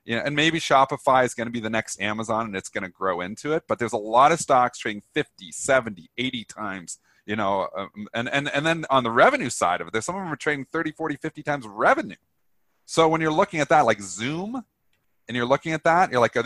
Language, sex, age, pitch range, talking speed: English, male, 30-49, 115-155 Hz, 250 wpm